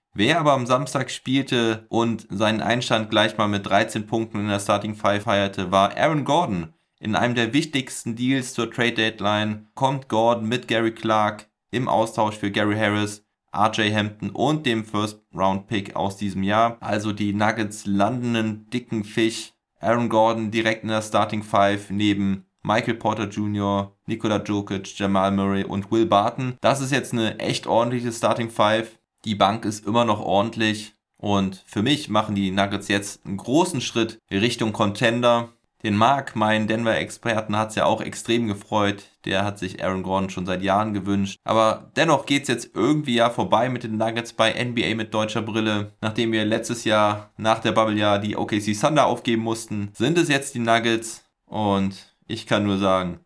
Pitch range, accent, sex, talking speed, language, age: 100-115 Hz, German, male, 175 wpm, German, 20-39